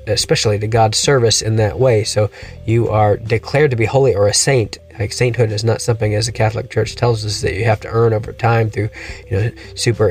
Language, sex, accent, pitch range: English, male, American, 105-120 Hz